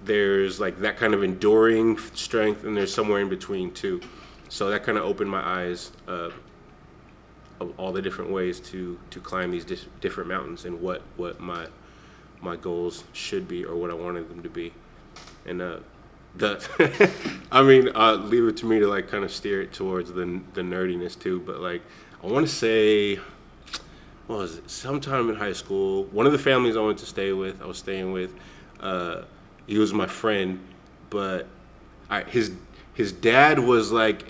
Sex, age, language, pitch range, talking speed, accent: male, 20-39, English, 95-110 Hz, 185 wpm, American